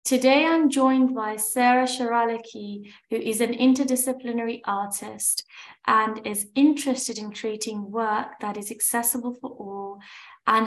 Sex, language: female, English